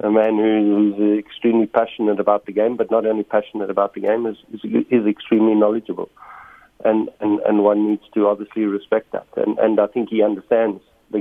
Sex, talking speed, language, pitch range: male, 200 wpm, English, 105-125 Hz